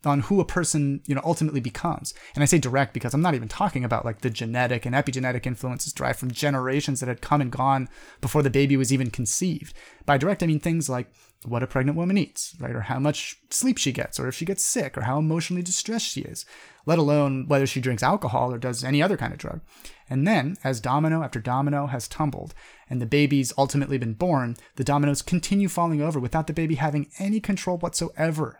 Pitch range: 130-165 Hz